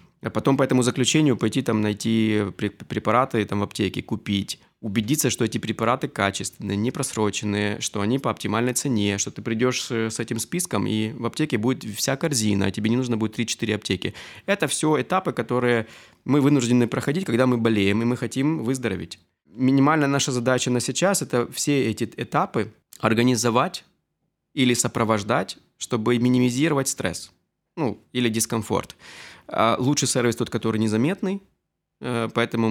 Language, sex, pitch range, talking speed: Ukrainian, male, 110-130 Hz, 150 wpm